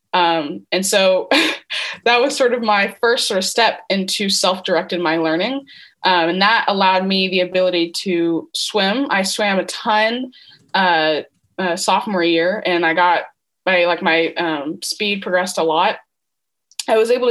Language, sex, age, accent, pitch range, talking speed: English, female, 20-39, American, 175-215 Hz, 165 wpm